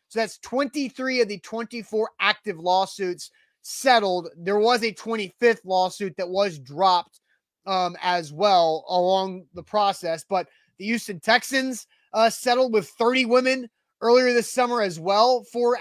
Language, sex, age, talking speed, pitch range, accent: English, male, 30-49, 145 wpm, 185-225 Hz, American